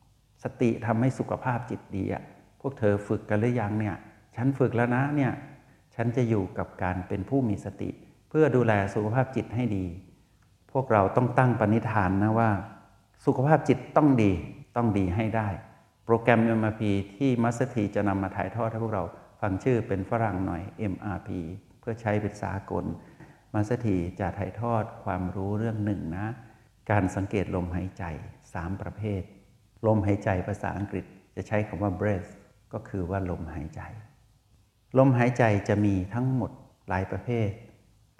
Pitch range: 95-115 Hz